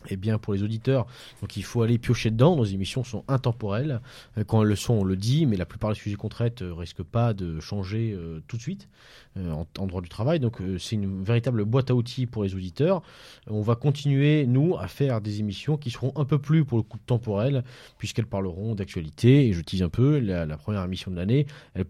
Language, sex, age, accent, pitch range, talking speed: French, male, 30-49, French, 100-130 Hz, 230 wpm